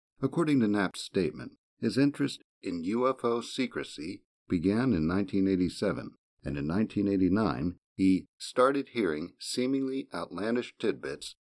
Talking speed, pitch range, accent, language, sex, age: 110 wpm, 95-125 Hz, American, English, male, 50-69